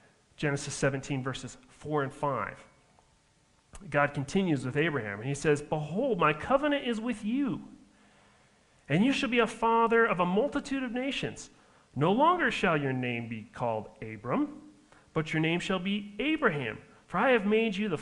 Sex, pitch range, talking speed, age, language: male, 125-165 Hz, 165 wpm, 40-59, English